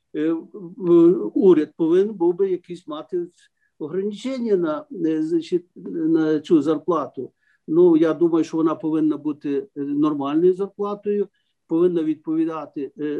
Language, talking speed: Ukrainian, 105 wpm